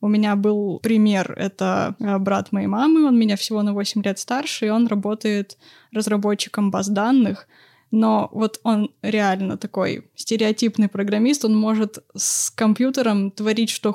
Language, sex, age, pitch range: Russian, female, 20-39, 210-235 Hz